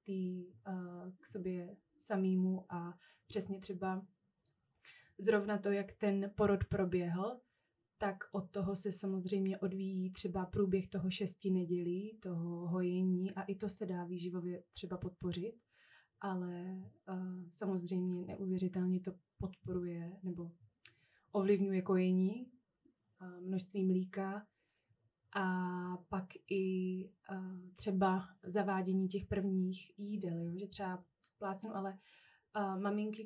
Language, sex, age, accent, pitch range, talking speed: Czech, female, 20-39, native, 180-200 Hz, 105 wpm